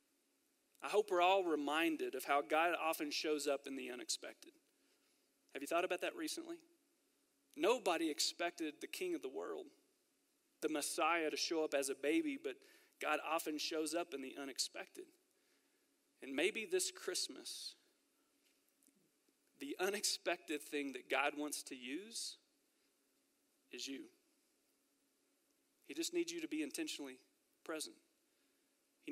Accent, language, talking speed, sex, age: American, English, 135 wpm, male, 40-59